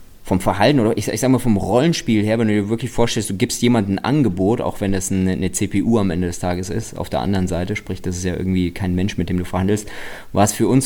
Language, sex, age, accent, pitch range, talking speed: German, male, 20-39, German, 95-110 Hz, 275 wpm